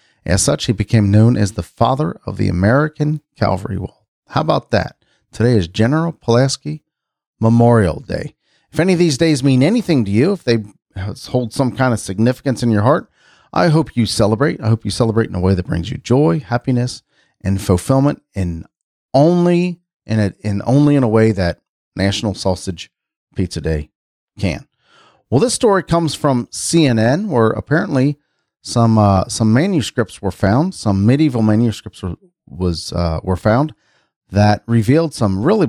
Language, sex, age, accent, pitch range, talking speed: English, male, 40-59, American, 105-140 Hz, 165 wpm